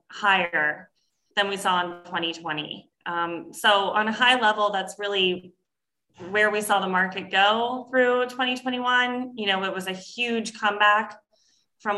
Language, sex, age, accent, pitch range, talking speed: English, female, 20-39, American, 185-210 Hz, 150 wpm